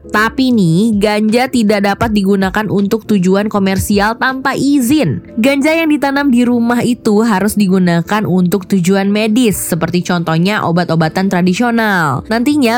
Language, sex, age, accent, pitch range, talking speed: Indonesian, female, 20-39, native, 205-265 Hz, 125 wpm